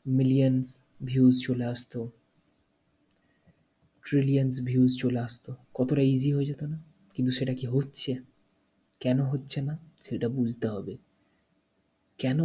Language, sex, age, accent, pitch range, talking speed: Bengali, male, 30-49, native, 125-150 Hz, 95 wpm